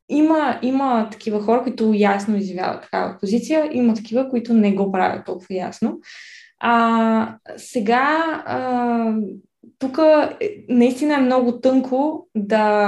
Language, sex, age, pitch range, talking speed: Bulgarian, female, 20-39, 205-240 Hz, 115 wpm